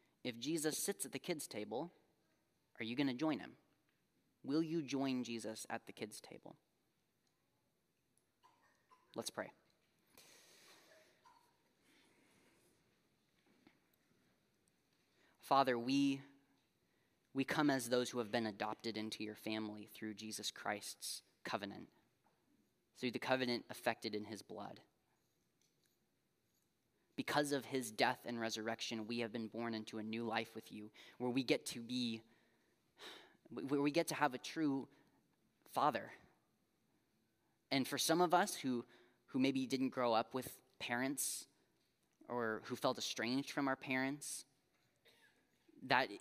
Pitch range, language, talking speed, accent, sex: 115-135 Hz, English, 125 wpm, American, male